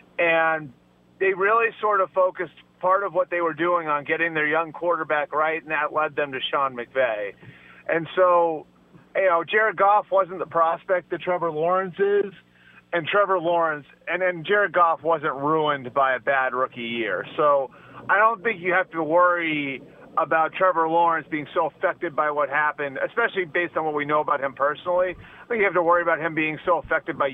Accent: American